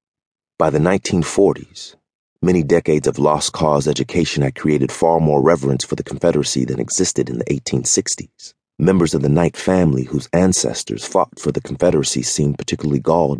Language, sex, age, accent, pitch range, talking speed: English, male, 30-49, American, 70-80 Hz, 160 wpm